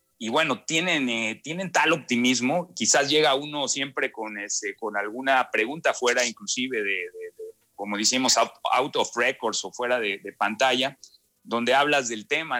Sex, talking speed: male, 170 wpm